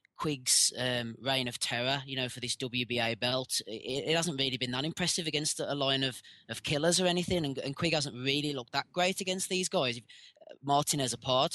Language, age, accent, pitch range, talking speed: English, 20-39, British, 120-155 Hz, 205 wpm